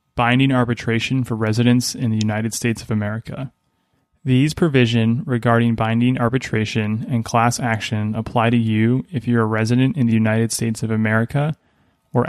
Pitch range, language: 110-125 Hz, English